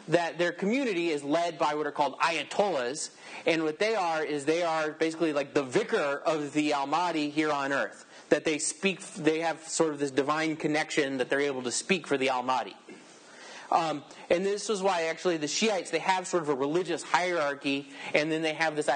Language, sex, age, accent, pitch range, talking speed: English, male, 30-49, American, 145-190 Hz, 205 wpm